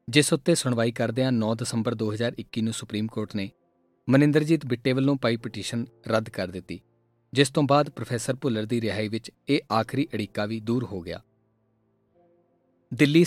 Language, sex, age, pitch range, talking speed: Punjabi, male, 40-59, 110-145 Hz, 165 wpm